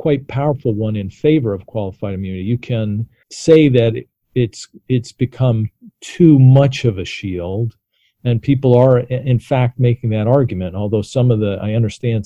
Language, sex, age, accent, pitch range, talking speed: English, male, 50-69, American, 110-135 Hz, 165 wpm